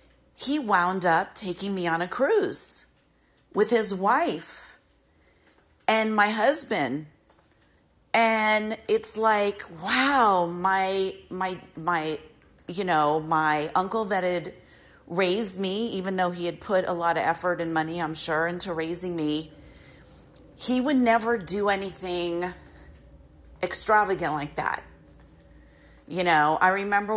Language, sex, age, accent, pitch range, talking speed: English, female, 40-59, American, 170-205 Hz, 125 wpm